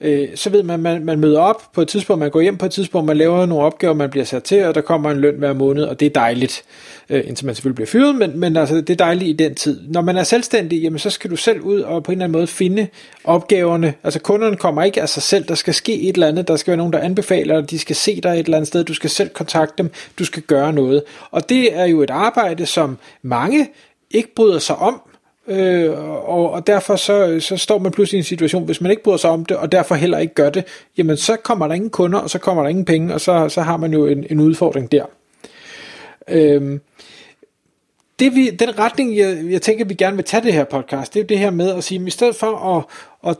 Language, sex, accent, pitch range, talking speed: Danish, male, native, 155-200 Hz, 265 wpm